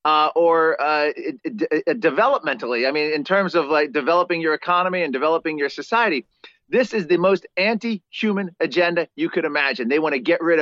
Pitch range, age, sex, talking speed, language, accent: 165-210 Hz, 40-59, male, 190 wpm, English, American